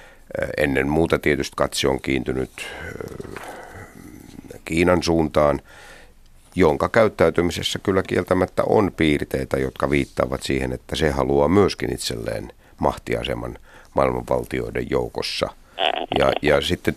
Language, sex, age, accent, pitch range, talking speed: Finnish, male, 50-69, native, 70-90 Hz, 95 wpm